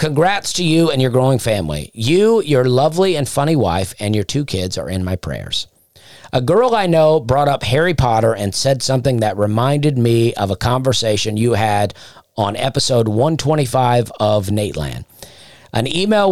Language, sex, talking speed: English, male, 175 wpm